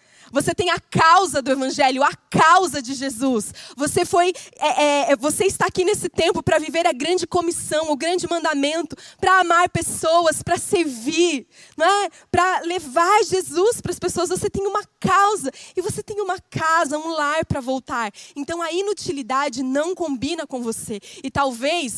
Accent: Brazilian